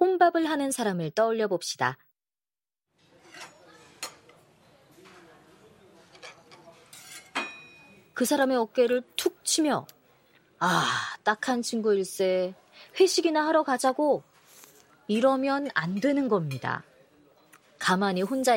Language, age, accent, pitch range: Korean, 30-49, native, 170-260 Hz